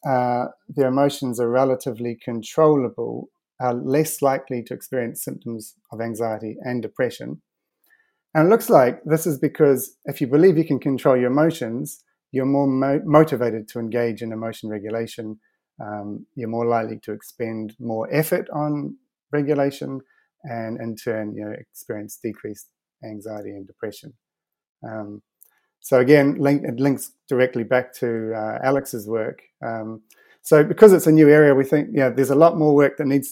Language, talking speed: English, 155 wpm